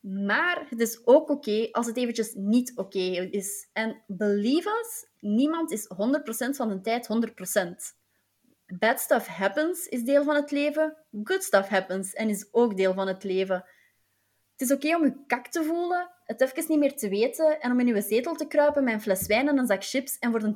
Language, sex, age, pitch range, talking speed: Dutch, female, 20-39, 210-280 Hz, 215 wpm